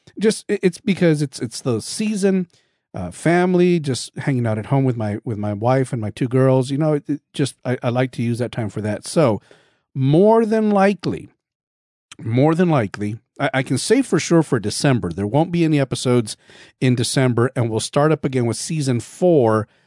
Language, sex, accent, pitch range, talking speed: English, male, American, 115-150 Hz, 195 wpm